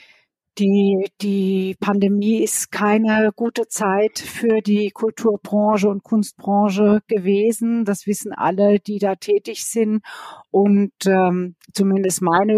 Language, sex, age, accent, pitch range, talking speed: German, female, 50-69, German, 180-210 Hz, 115 wpm